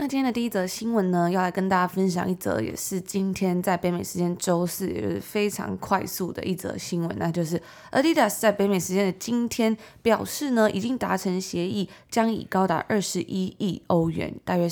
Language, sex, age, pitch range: Chinese, female, 20-39, 180-215 Hz